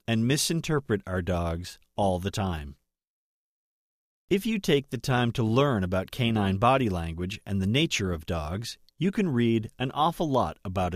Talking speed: 165 wpm